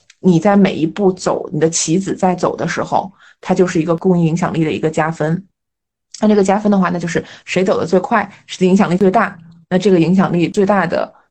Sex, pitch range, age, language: female, 180-240 Hz, 20-39, Chinese